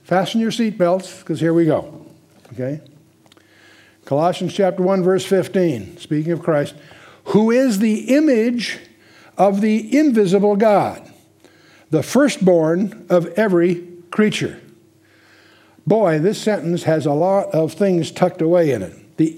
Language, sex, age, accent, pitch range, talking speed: English, male, 60-79, American, 155-205 Hz, 130 wpm